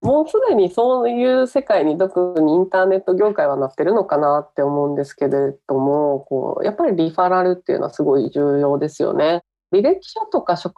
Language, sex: Japanese, female